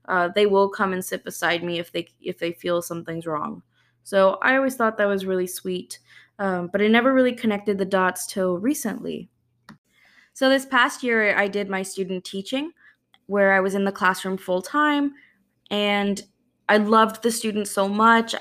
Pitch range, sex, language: 185-220 Hz, female, English